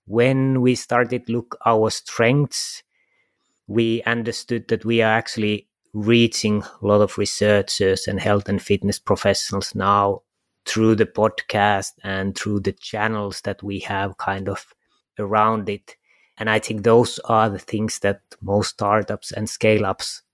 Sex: male